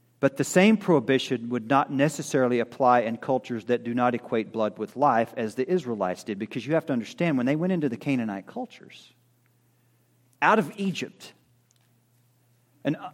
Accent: American